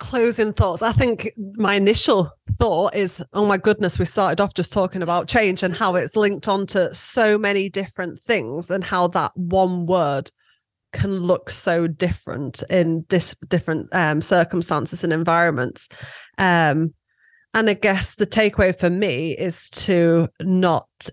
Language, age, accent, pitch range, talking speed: English, 30-49, British, 160-195 Hz, 150 wpm